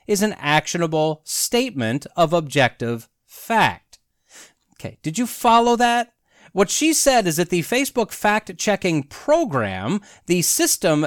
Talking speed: 125 wpm